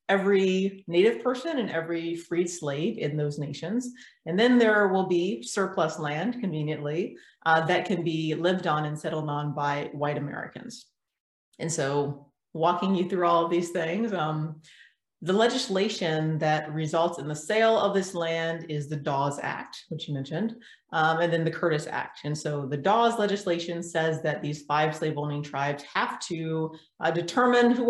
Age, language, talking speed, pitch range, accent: 30-49, English, 170 wpm, 155-190 Hz, American